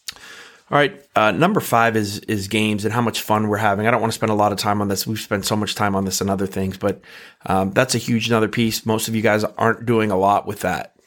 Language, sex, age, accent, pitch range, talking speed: English, male, 30-49, American, 100-115 Hz, 280 wpm